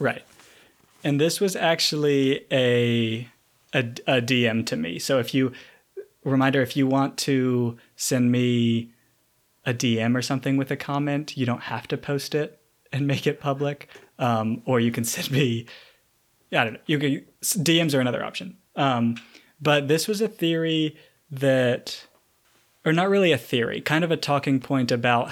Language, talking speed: English, 160 wpm